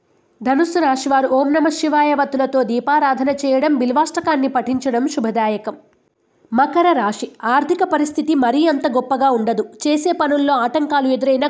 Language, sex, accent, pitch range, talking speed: Telugu, female, native, 245-310 Hz, 110 wpm